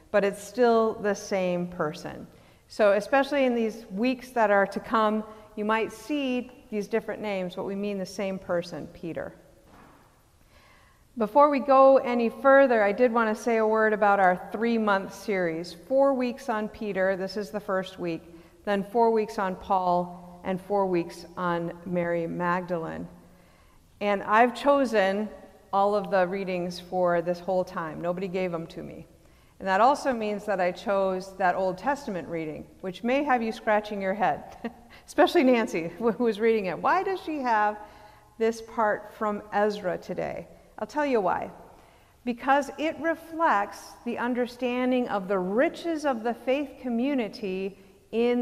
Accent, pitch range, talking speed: American, 190-235 Hz, 160 wpm